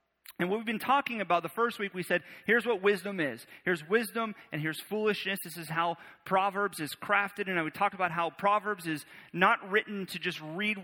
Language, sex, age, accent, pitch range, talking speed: English, male, 30-49, American, 155-200 Hz, 210 wpm